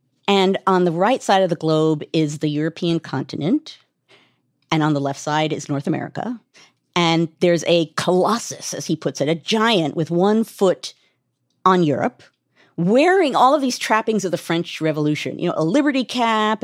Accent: American